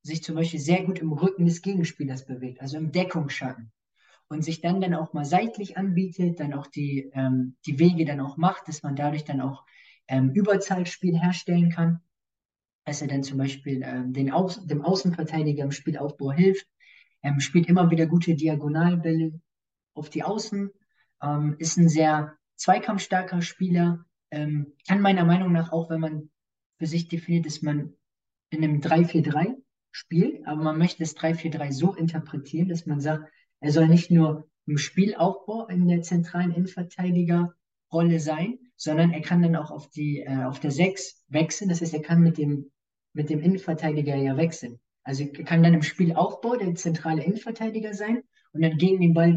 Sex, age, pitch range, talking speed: male, 20-39, 150-175 Hz, 170 wpm